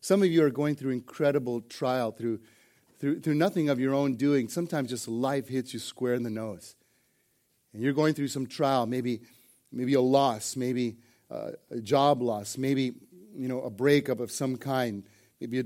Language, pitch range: English, 125-150 Hz